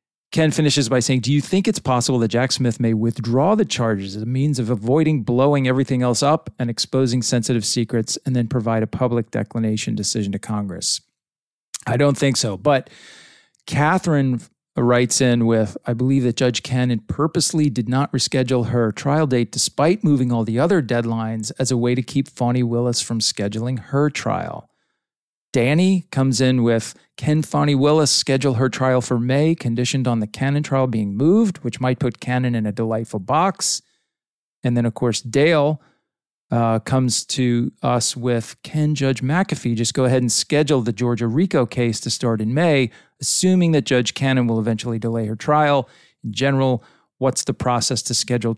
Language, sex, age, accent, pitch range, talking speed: English, male, 40-59, American, 115-140 Hz, 180 wpm